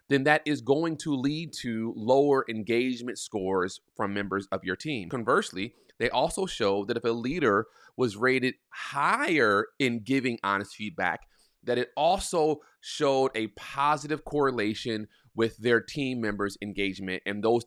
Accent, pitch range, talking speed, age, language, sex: American, 115-150 Hz, 150 wpm, 30-49, English, male